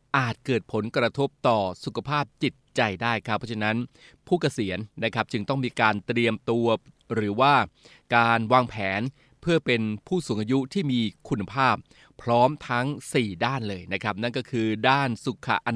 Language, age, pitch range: Thai, 20-39, 110-135 Hz